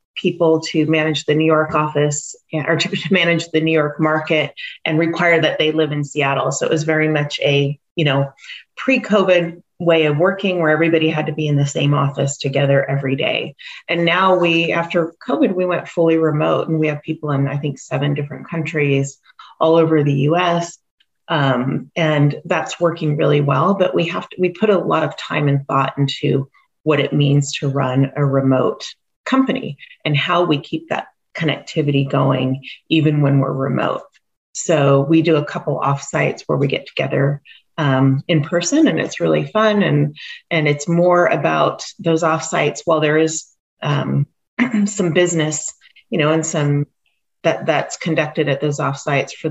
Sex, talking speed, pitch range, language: female, 180 wpm, 140-165 Hz, English